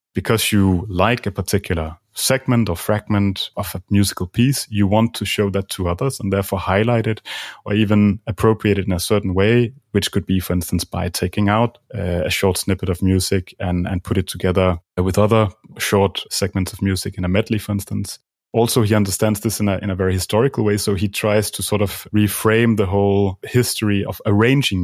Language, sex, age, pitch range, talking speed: English, male, 30-49, 95-110 Hz, 205 wpm